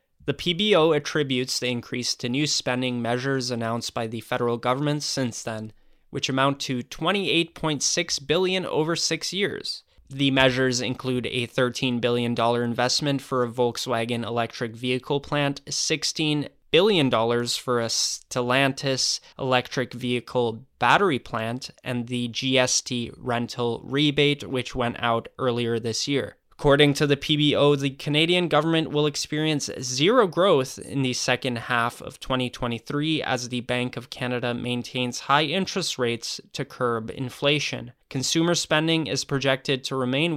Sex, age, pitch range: male, 10-29, 120-145 Hz